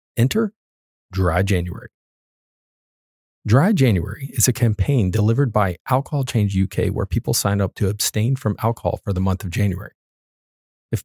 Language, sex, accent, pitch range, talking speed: English, male, American, 95-120 Hz, 145 wpm